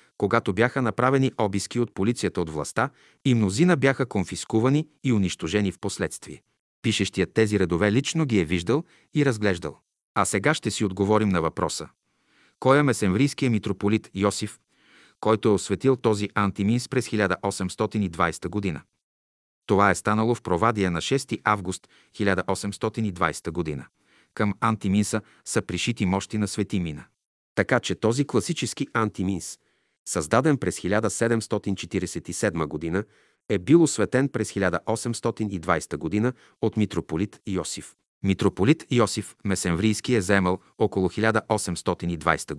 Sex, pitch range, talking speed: male, 95-115 Hz, 125 wpm